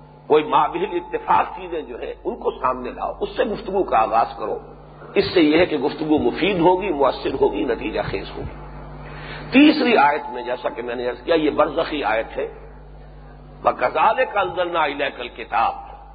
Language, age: English, 50-69